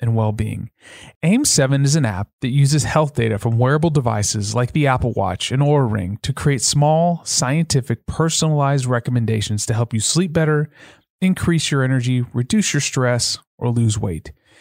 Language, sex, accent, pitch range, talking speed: English, male, American, 110-150 Hz, 170 wpm